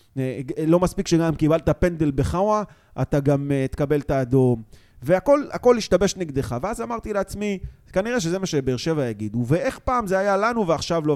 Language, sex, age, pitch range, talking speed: Hebrew, male, 30-49, 130-185 Hz, 175 wpm